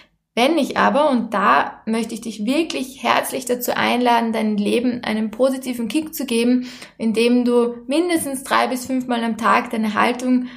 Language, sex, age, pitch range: German, female, 20-39, 225-270 Hz